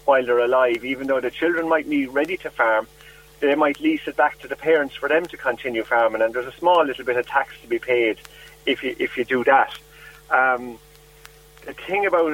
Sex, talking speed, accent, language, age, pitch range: male, 225 wpm, British, English, 40-59, 130-160 Hz